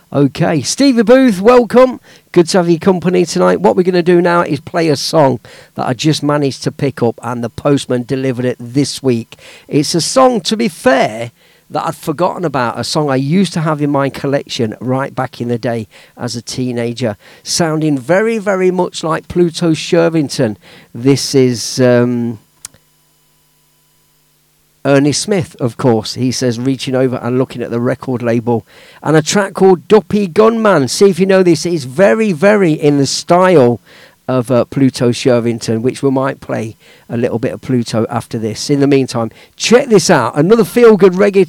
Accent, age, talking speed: British, 50-69, 185 wpm